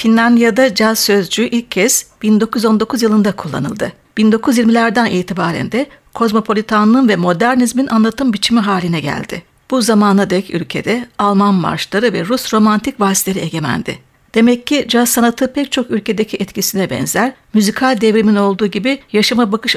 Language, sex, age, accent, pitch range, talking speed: Turkish, female, 60-79, native, 205-245 Hz, 135 wpm